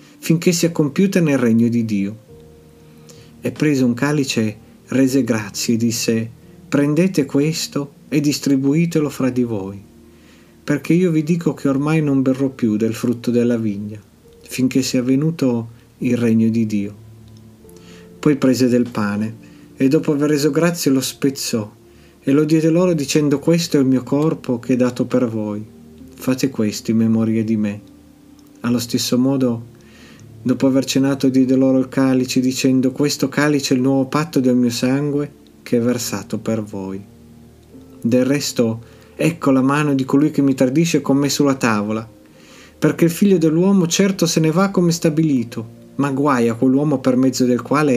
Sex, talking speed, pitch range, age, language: male, 165 wpm, 115-150 Hz, 50-69, Italian